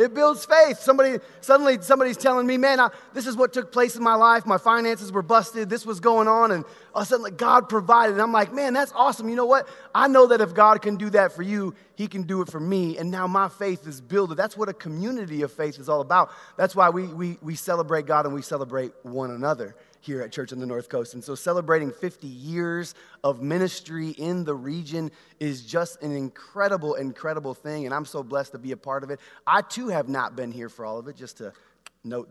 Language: English